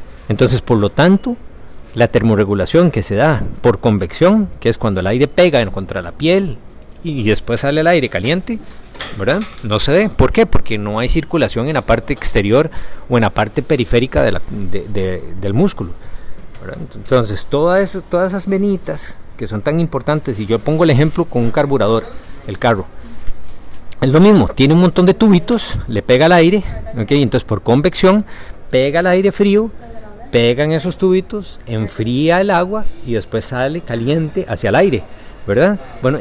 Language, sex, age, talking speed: Spanish, male, 40-59, 180 wpm